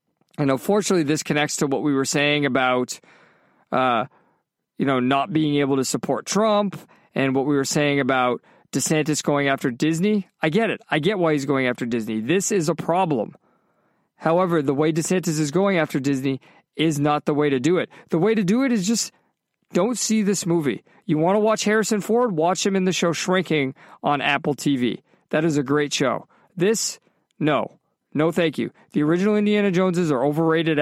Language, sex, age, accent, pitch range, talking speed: English, male, 50-69, American, 150-195 Hz, 195 wpm